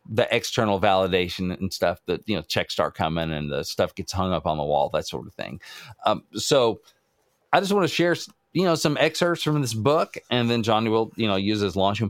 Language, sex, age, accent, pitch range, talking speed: English, male, 40-59, American, 100-135 Hz, 235 wpm